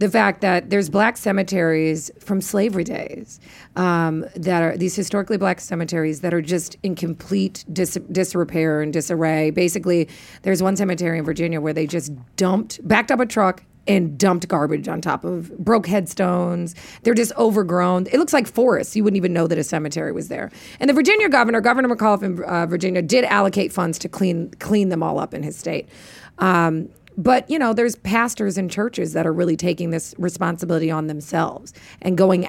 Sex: female